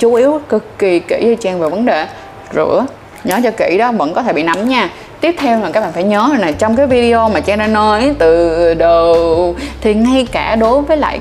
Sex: female